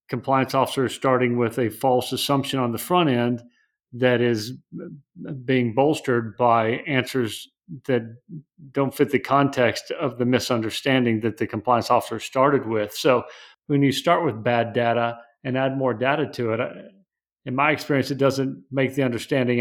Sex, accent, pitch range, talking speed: male, American, 115-140 Hz, 160 wpm